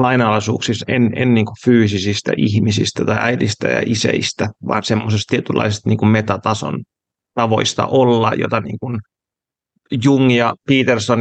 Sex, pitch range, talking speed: male, 115-130 Hz, 125 wpm